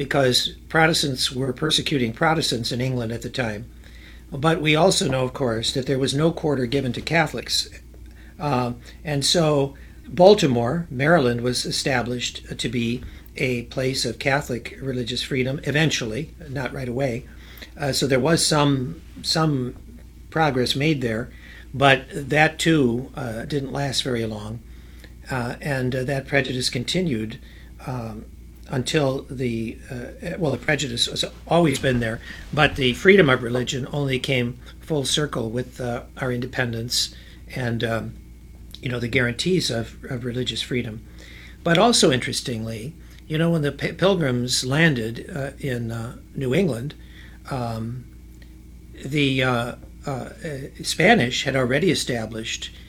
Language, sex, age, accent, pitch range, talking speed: English, male, 60-79, American, 115-145 Hz, 140 wpm